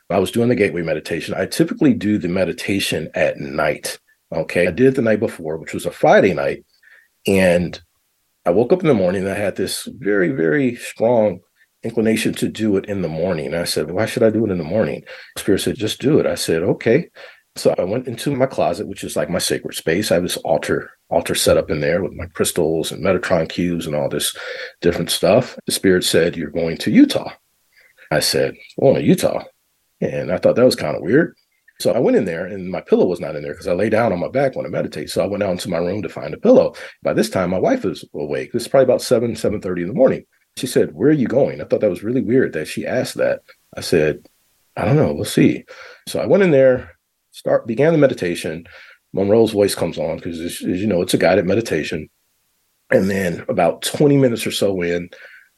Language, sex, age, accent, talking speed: English, male, 40-59, American, 235 wpm